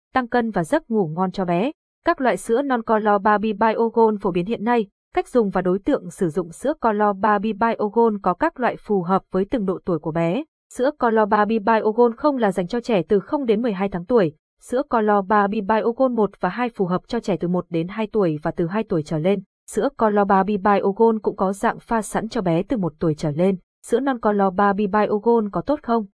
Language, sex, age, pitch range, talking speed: Vietnamese, female, 20-39, 190-235 Hz, 235 wpm